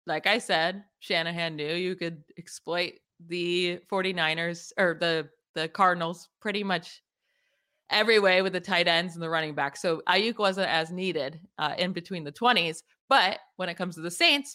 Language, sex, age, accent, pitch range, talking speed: English, female, 20-39, American, 170-210 Hz, 175 wpm